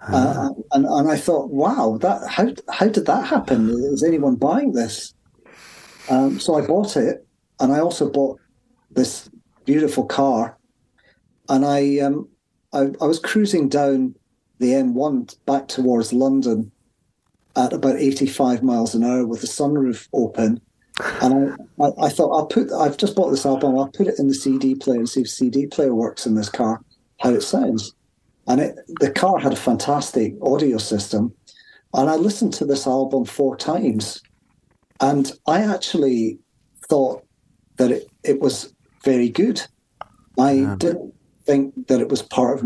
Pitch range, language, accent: 120-145 Hz, English, British